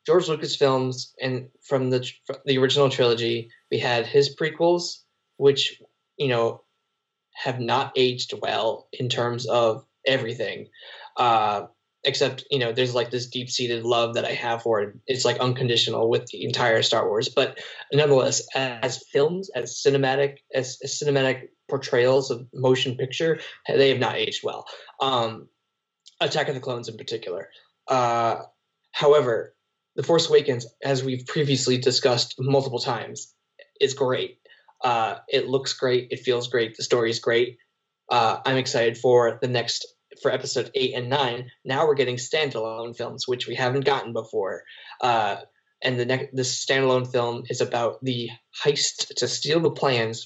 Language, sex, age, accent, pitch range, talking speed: English, male, 10-29, American, 120-145 Hz, 155 wpm